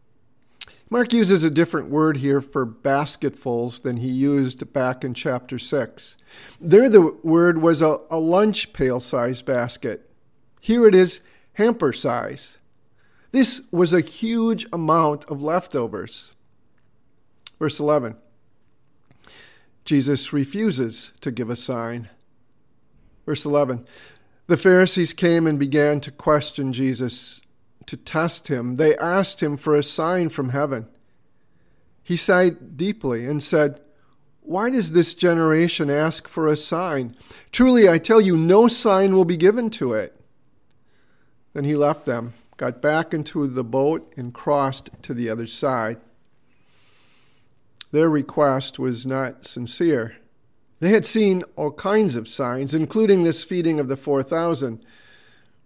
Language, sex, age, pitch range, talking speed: English, male, 50-69, 130-170 Hz, 130 wpm